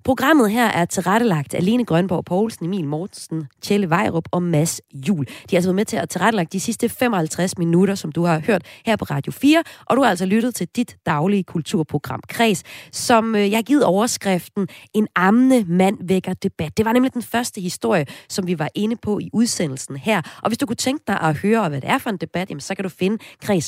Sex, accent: female, native